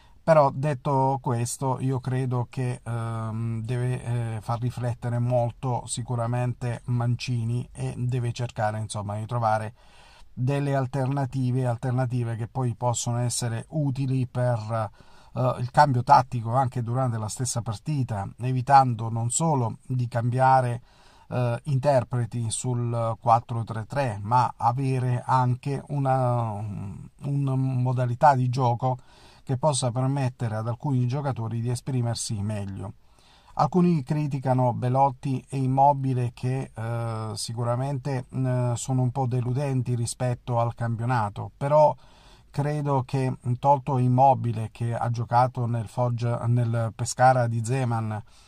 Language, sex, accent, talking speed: Italian, male, native, 115 wpm